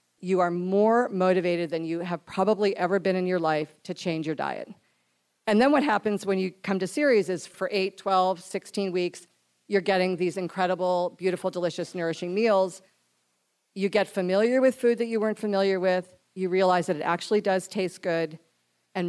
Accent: American